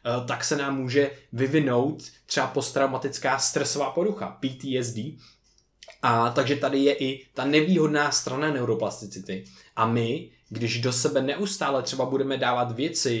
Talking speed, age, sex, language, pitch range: 130 wpm, 20-39, male, Czech, 115-145 Hz